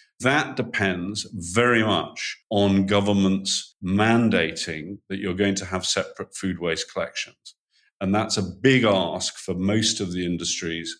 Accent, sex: British, male